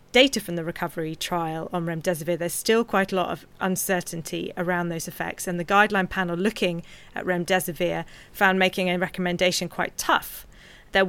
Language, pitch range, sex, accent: English, 170-195 Hz, female, British